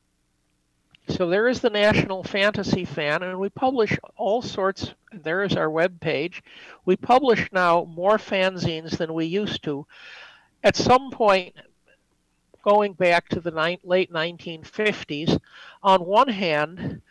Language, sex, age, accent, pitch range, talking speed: English, male, 60-79, American, 160-200 Hz, 135 wpm